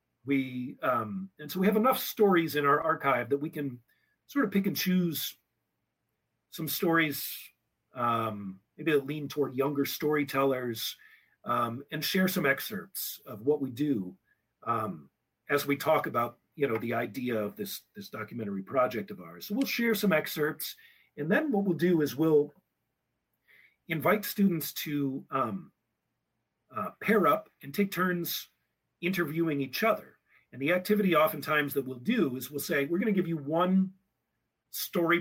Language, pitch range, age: English, 140-195 Hz, 40-59